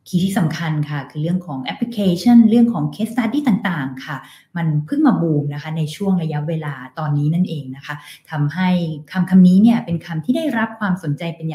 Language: Thai